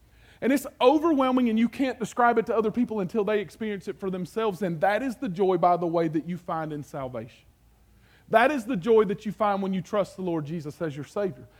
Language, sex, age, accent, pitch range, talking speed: English, male, 40-59, American, 145-235 Hz, 240 wpm